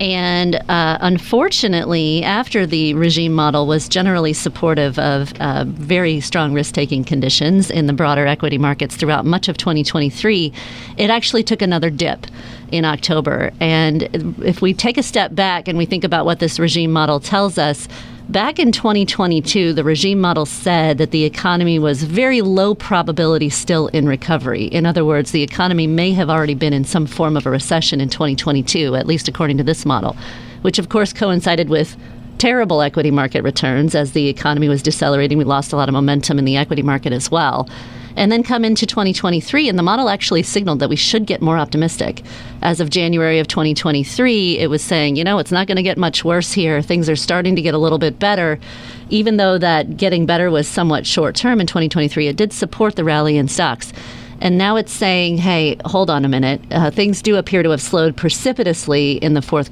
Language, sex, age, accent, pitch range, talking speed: English, female, 40-59, American, 145-185 Hz, 195 wpm